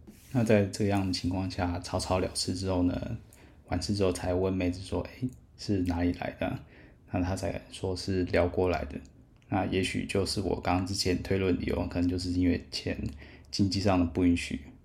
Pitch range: 85-100 Hz